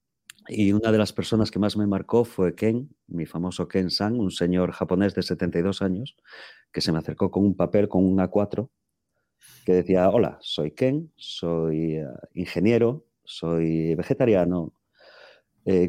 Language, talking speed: English, 150 wpm